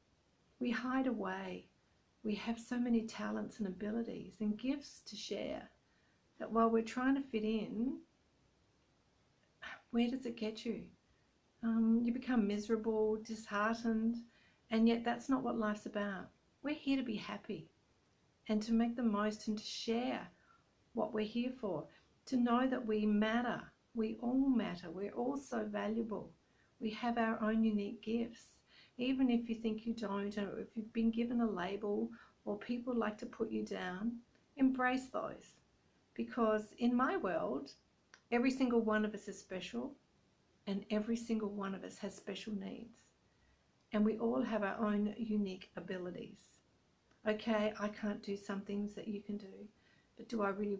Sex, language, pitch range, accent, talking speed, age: female, English, 210-235 Hz, Australian, 160 wpm, 50-69